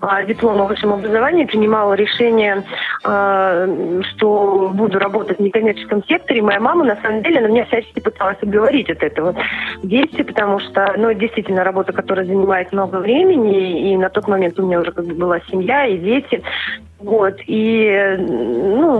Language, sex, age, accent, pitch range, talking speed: Russian, female, 20-39, native, 190-230 Hz, 160 wpm